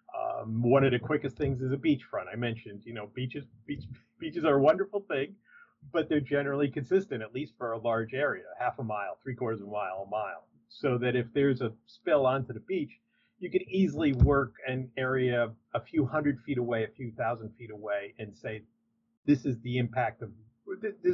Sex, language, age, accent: male, English, 40-59, American